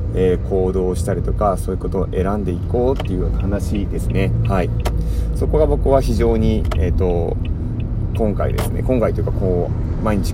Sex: male